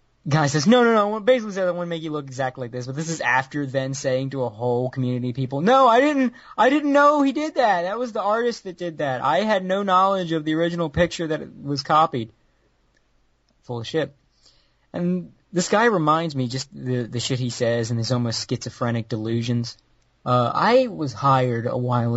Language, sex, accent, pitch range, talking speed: English, male, American, 125-185 Hz, 220 wpm